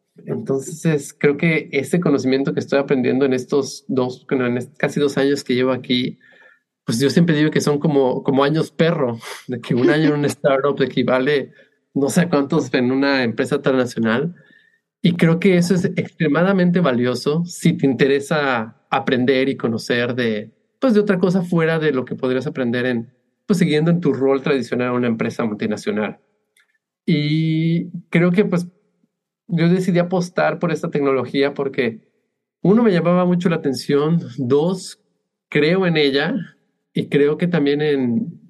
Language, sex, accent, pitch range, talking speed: English, male, Mexican, 130-175 Hz, 160 wpm